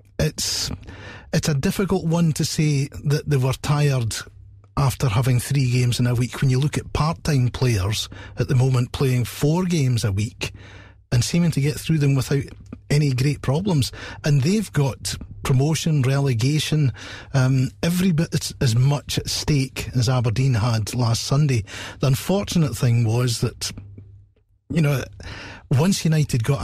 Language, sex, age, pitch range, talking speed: English, male, 40-59, 100-140 Hz, 155 wpm